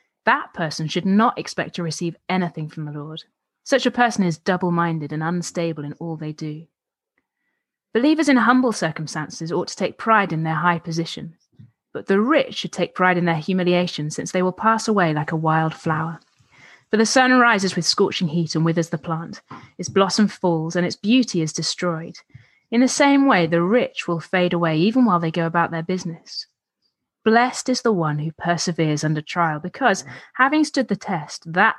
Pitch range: 165-210 Hz